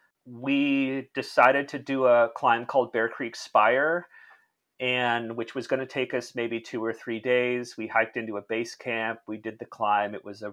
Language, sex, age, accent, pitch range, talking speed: English, male, 40-59, American, 115-150 Hz, 200 wpm